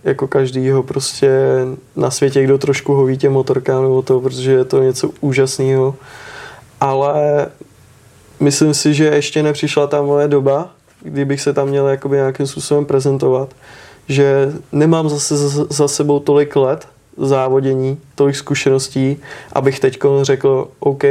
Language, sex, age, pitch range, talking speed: Czech, male, 20-39, 135-145 Hz, 135 wpm